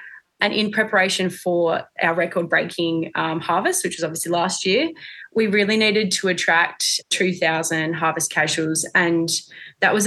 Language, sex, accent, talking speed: English, female, Australian, 150 wpm